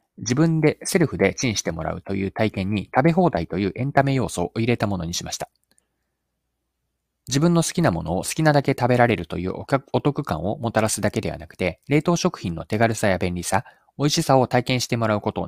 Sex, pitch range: male, 95-145 Hz